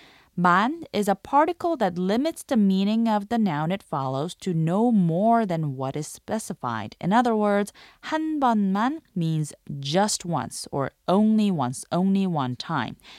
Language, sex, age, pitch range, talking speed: English, female, 20-39, 165-240 Hz, 155 wpm